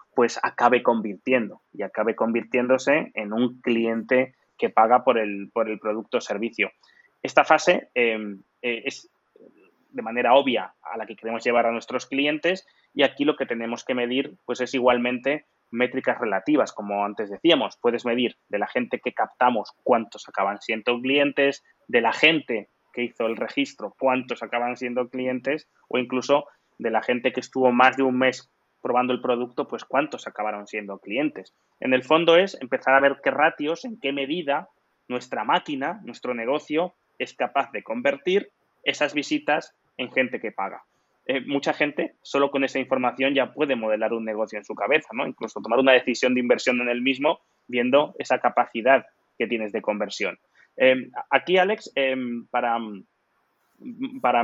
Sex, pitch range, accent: male, 120-140 Hz, Spanish